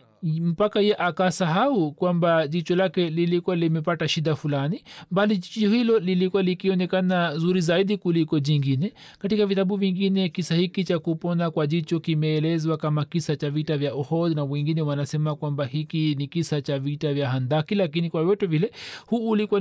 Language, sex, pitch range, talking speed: Swahili, male, 150-180 Hz, 160 wpm